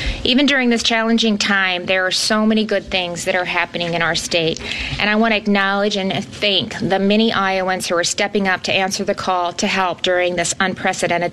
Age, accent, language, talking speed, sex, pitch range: 30-49, American, English, 210 wpm, female, 180-215 Hz